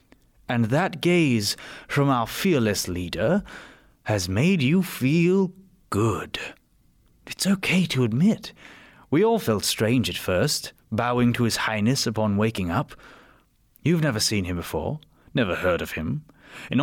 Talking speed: 140 wpm